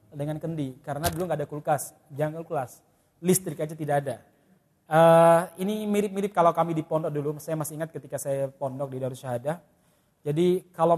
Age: 30-49